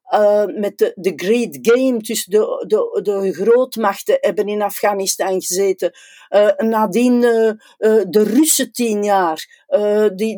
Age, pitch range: 60-79, 185-235 Hz